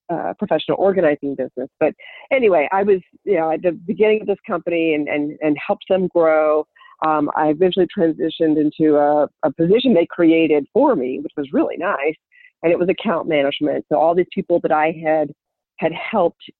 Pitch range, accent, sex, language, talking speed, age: 145-185 Hz, American, female, English, 190 wpm, 50-69